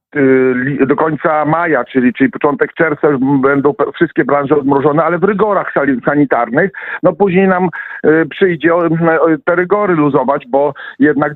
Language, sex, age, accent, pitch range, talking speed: Polish, male, 50-69, native, 140-175 Hz, 125 wpm